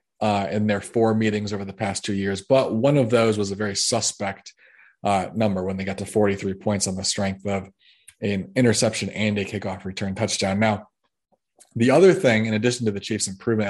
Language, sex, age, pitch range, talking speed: English, male, 20-39, 100-110 Hz, 205 wpm